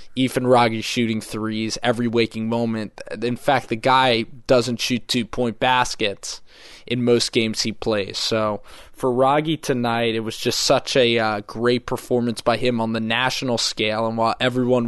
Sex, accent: male, American